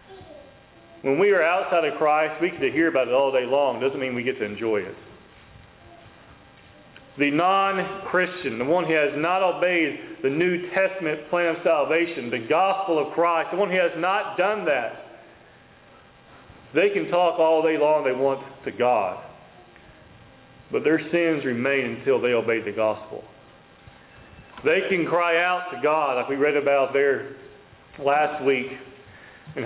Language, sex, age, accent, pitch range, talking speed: English, male, 40-59, American, 135-180 Hz, 160 wpm